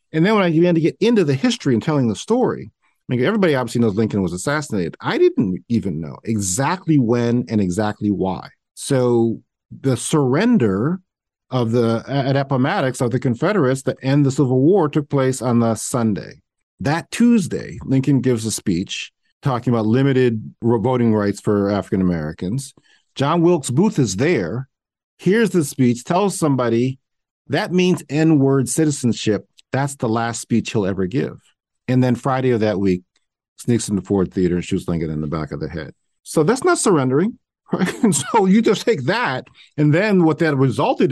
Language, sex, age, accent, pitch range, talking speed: English, male, 40-59, American, 110-165 Hz, 175 wpm